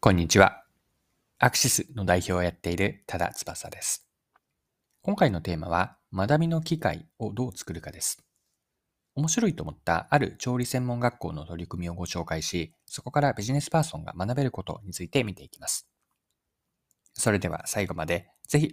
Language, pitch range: Japanese, 90-145 Hz